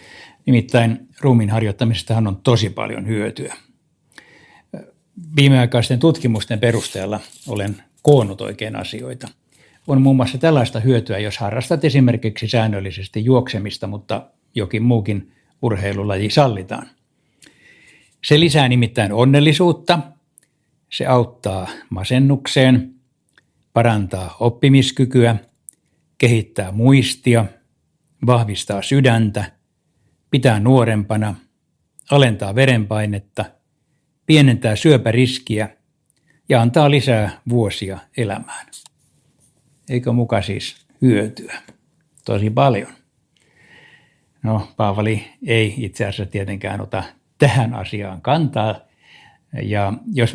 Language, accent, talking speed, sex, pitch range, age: Finnish, native, 85 wpm, male, 105-135 Hz, 60-79